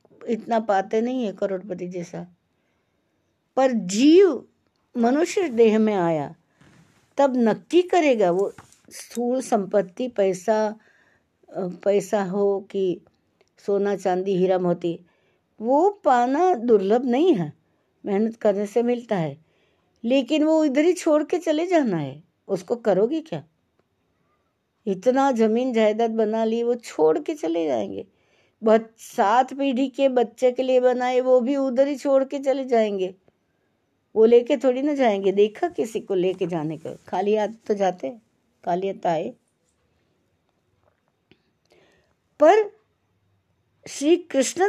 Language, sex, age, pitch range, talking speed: Hindi, female, 60-79, 195-260 Hz, 120 wpm